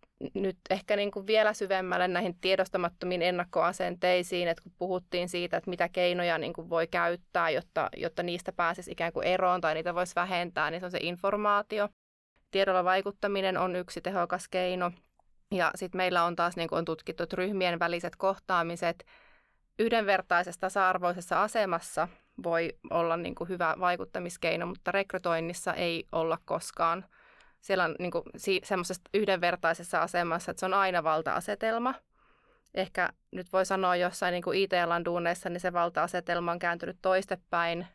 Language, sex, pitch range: Finnish, female, 170-190 Hz